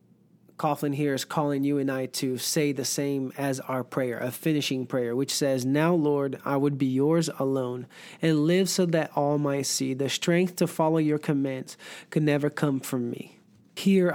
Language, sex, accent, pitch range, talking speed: English, male, American, 135-160 Hz, 190 wpm